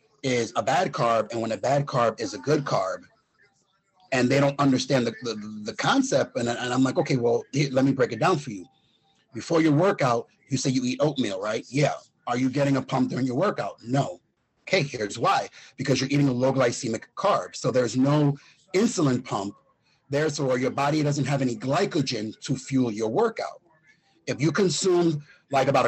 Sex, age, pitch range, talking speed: male, 30-49, 130-160 Hz, 195 wpm